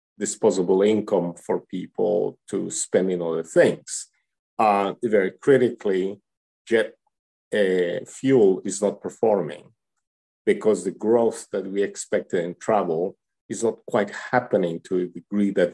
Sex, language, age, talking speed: male, English, 50-69, 130 wpm